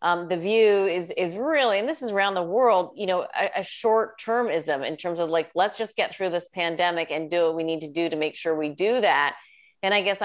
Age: 30-49